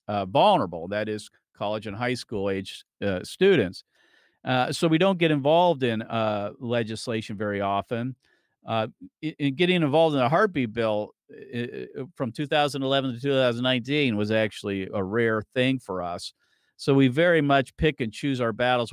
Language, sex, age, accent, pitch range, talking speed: English, male, 50-69, American, 115-145 Hz, 160 wpm